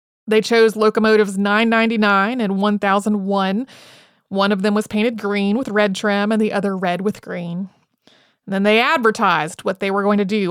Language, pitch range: English, 200-240 Hz